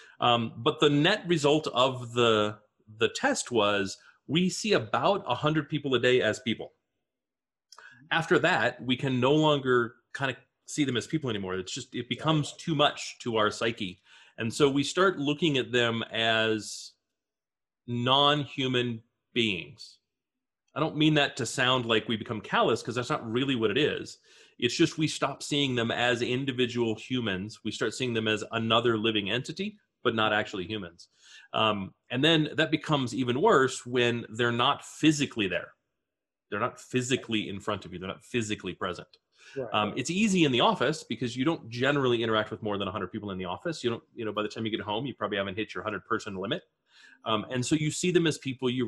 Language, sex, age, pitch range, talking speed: English, male, 30-49, 110-140 Hz, 195 wpm